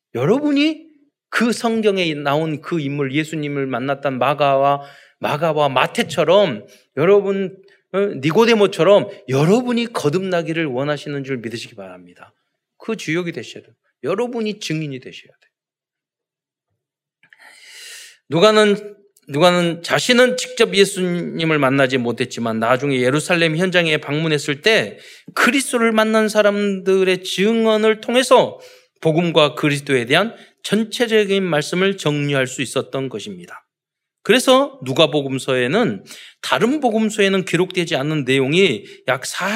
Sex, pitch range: male, 140-205 Hz